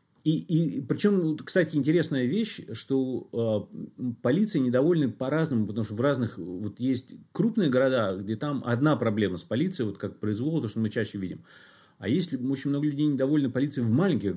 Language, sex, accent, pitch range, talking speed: Russian, male, native, 105-140 Hz, 180 wpm